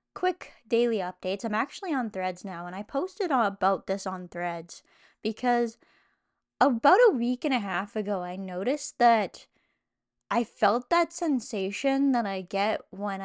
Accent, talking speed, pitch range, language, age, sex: American, 155 wpm, 195-260 Hz, English, 10-29, female